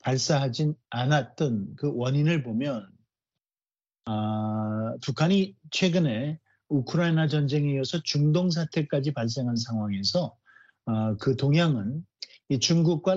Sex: male